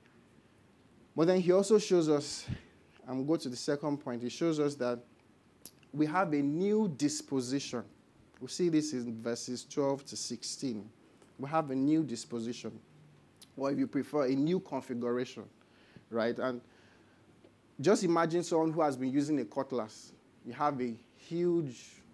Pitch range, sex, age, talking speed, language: 120-155 Hz, male, 30-49, 155 wpm, English